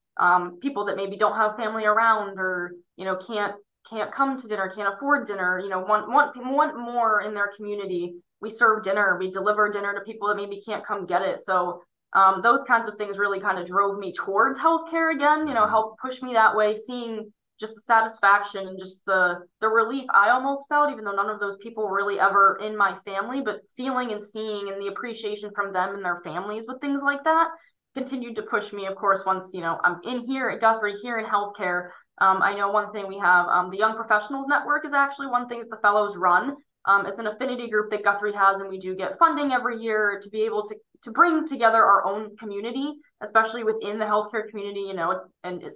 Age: 20-39